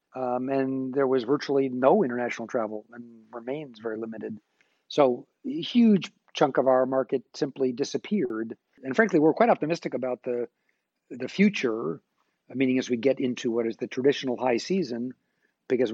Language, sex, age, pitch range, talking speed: English, male, 50-69, 120-145 Hz, 160 wpm